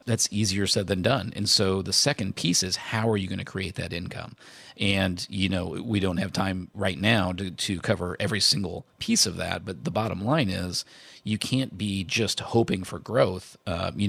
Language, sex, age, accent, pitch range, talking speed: English, male, 40-59, American, 95-105 Hz, 215 wpm